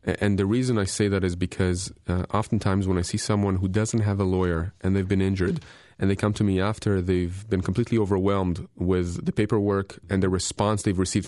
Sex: male